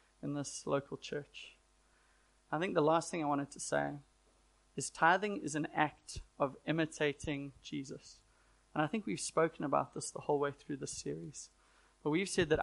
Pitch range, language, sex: 145-160 Hz, English, male